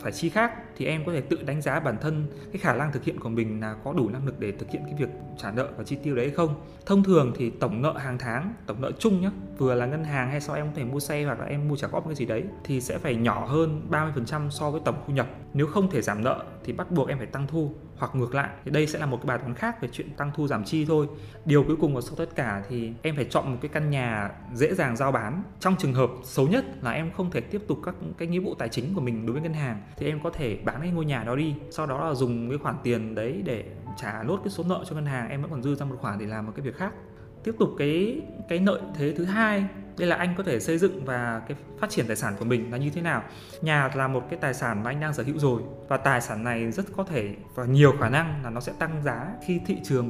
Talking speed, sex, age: 300 wpm, male, 20-39